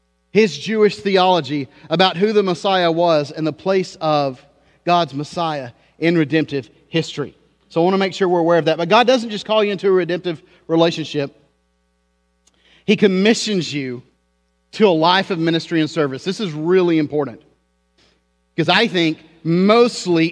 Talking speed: 160 wpm